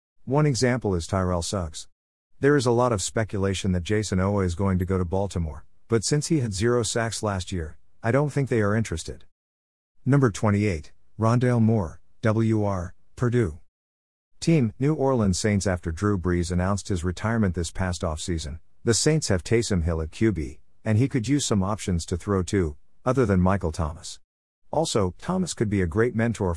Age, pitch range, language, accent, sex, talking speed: 50-69, 85-115 Hz, English, American, male, 180 wpm